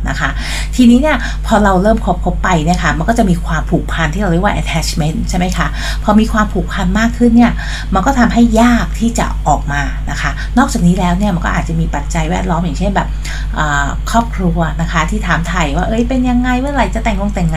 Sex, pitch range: female, 155-205 Hz